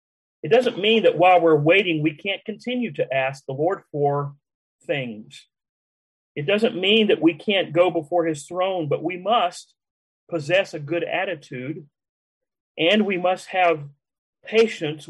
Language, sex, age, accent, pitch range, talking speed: English, male, 40-59, American, 140-175 Hz, 150 wpm